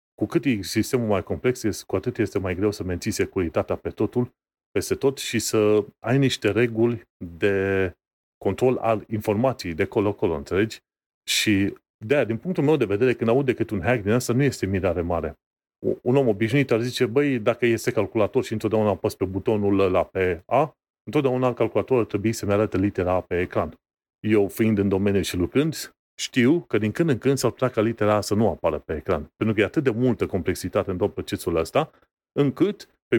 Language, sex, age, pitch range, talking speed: Romanian, male, 30-49, 100-120 Hz, 190 wpm